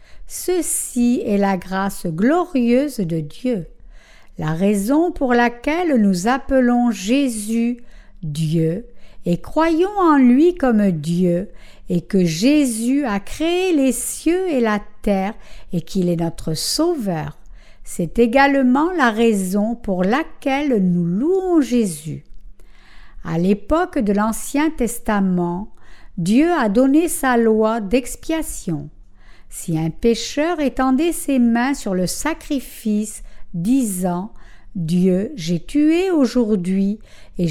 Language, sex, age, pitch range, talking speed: French, female, 60-79, 185-280 Hz, 115 wpm